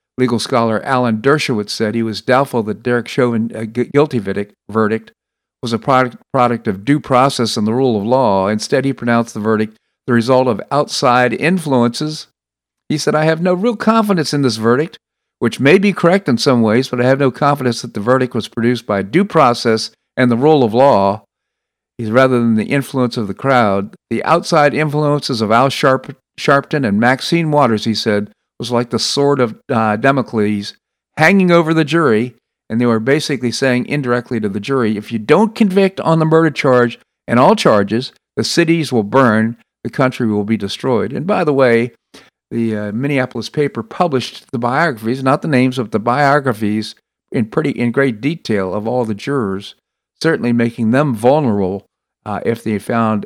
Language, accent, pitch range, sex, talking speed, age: English, American, 110-140 Hz, male, 185 wpm, 50-69